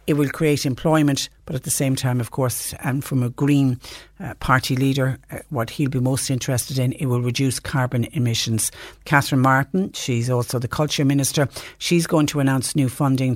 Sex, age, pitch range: female, 60-79, 130-155 Hz